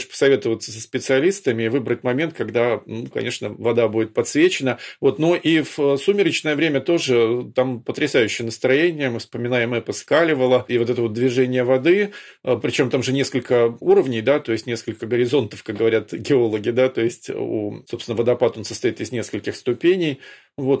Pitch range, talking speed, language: 120-140 Hz, 160 wpm, Russian